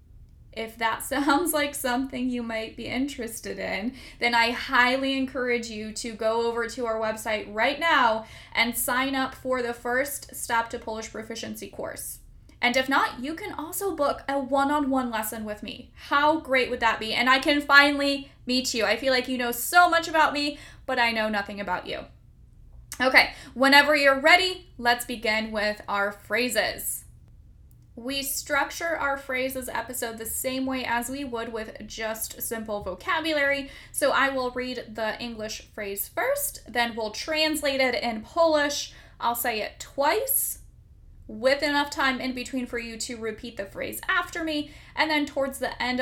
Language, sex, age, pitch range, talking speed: English, female, 10-29, 225-280 Hz, 170 wpm